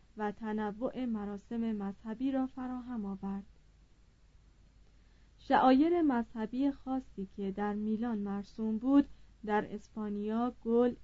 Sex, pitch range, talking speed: female, 210-260 Hz, 100 wpm